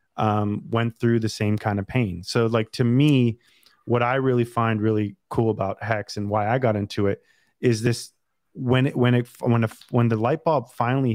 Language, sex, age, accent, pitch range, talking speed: English, male, 30-49, American, 110-125 Hz, 210 wpm